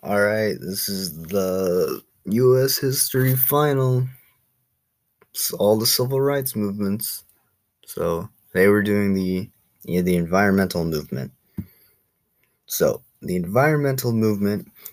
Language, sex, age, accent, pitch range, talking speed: English, male, 20-39, American, 90-115 Hz, 110 wpm